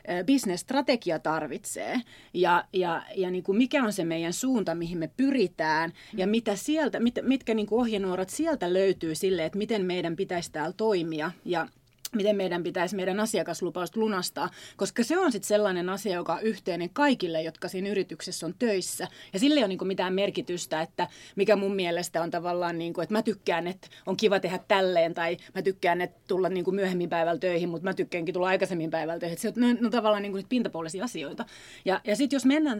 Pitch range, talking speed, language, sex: 175-220 Hz, 175 wpm, Finnish, female